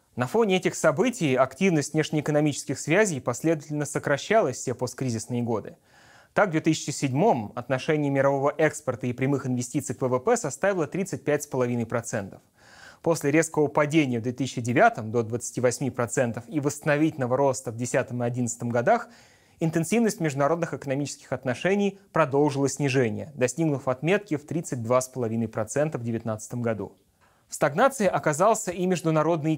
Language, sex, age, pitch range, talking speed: Russian, male, 20-39, 125-160 Hz, 115 wpm